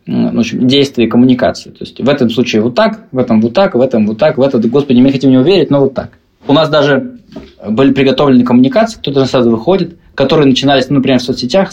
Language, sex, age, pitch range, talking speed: Russian, male, 20-39, 125-160 Hz, 235 wpm